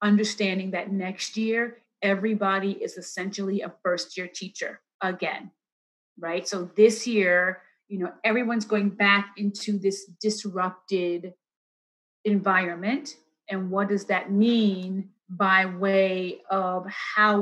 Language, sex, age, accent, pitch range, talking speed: English, female, 30-49, American, 185-215 Hz, 115 wpm